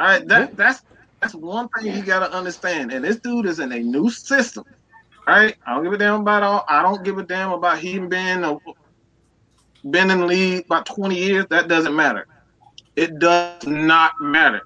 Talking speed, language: 200 wpm, English